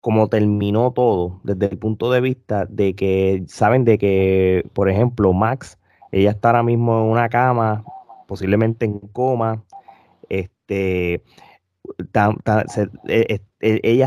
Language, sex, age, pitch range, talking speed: Spanish, male, 20-39, 105-125 Hz, 115 wpm